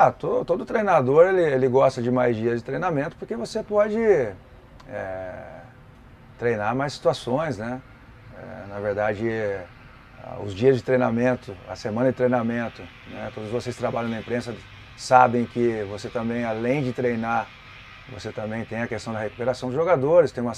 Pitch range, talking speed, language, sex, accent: 110-130 Hz, 150 wpm, Portuguese, male, Brazilian